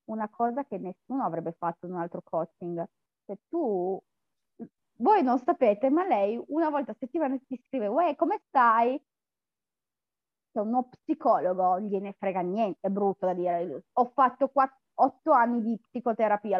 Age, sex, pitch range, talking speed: 20-39, female, 210-275 Hz, 155 wpm